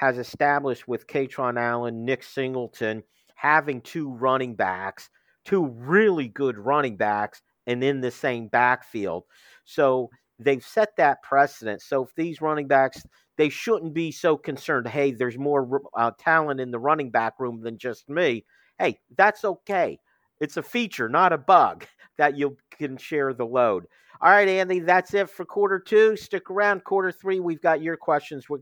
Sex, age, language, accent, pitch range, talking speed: male, 50-69, English, American, 135-200 Hz, 170 wpm